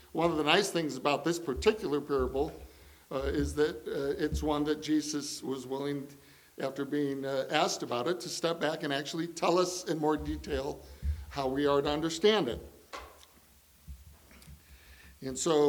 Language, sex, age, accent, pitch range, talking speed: English, male, 60-79, American, 130-165 Hz, 165 wpm